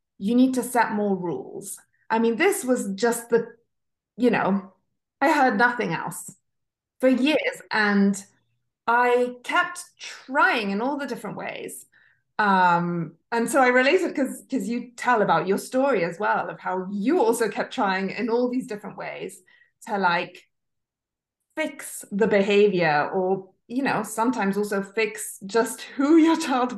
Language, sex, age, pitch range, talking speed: English, female, 30-49, 180-245 Hz, 155 wpm